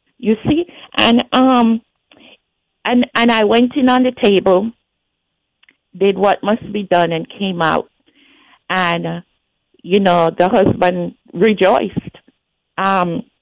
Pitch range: 180-245 Hz